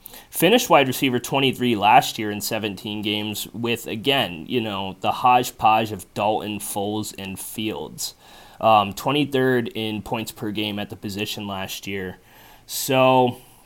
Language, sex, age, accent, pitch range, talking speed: English, male, 30-49, American, 110-135 Hz, 140 wpm